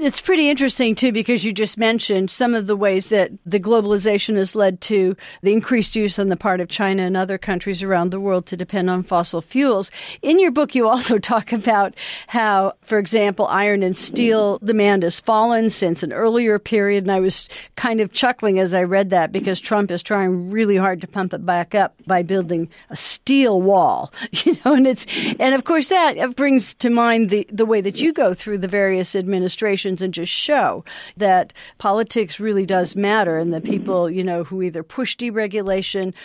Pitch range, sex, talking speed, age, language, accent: 190-240 Hz, female, 200 wpm, 50-69, English, American